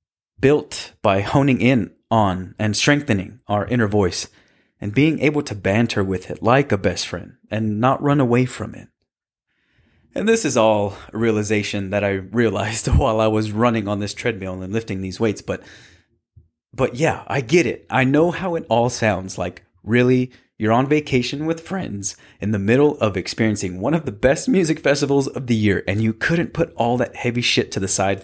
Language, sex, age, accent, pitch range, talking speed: English, male, 30-49, American, 100-130 Hz, 195 wpm